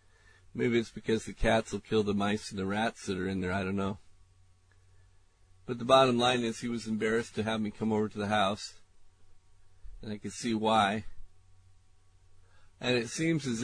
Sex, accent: male, American